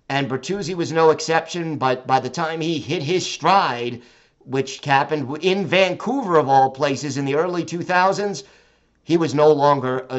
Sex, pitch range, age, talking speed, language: male, 140-185 Hz, 50-69, 170 wpm, English